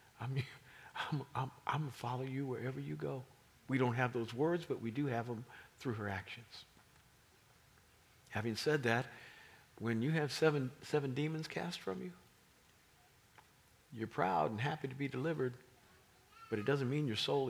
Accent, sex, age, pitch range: American, male, 50-69, 105-130 Hz